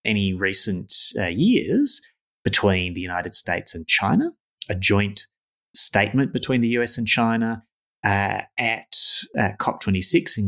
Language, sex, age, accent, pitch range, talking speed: English, male, 30-49, Australian, 95-120 Hz, 130 wpm